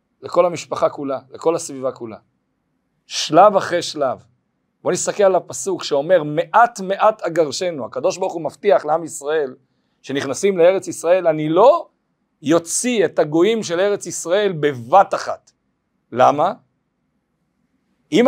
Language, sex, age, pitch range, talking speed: Hebrew, male, 40-59, 155-230 Hz, 125 wpm